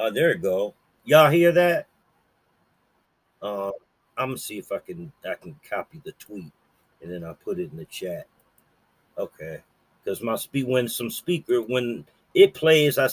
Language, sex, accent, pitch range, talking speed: English, male, American, 110-170 Hz, 175 wpm